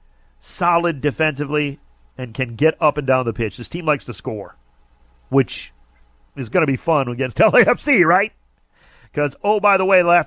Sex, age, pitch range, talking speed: male, 40-59, 115-160 Hz, 175 wpm